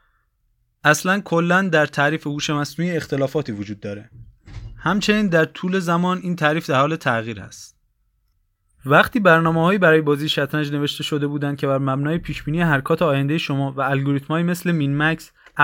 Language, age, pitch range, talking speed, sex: Persian, 20-39, 135-170 Hz, 150 wpm, male